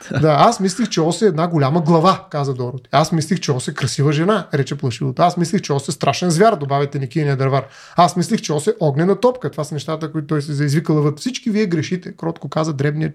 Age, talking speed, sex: 30-49, 225 wpm, male